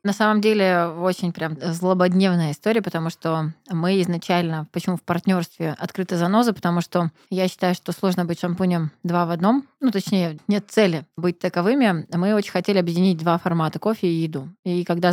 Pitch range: 160-195 Hz